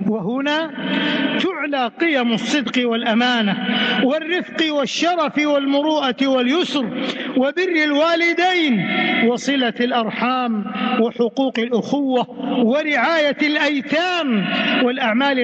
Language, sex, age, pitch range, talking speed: English, male, 50-69, 230-285 Hz, 70 wpm